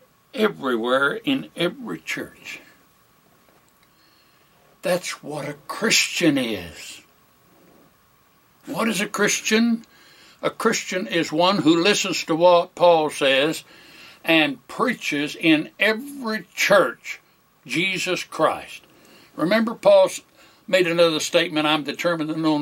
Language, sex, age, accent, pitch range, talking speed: English, male, 60-79, American, 145-195 Hz, 105 wpm